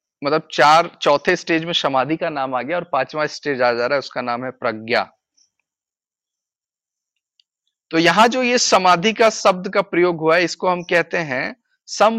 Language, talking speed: Hindi, 185 wpm